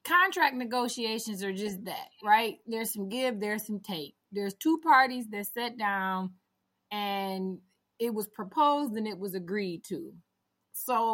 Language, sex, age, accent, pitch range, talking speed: English, female, 20-39, American, 200-255 Hz, 150 wpm